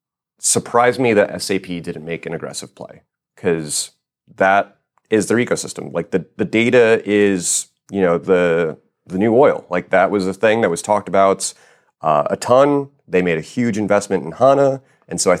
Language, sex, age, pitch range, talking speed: English, male, 30-49, 90-105 Hz, 185 wpm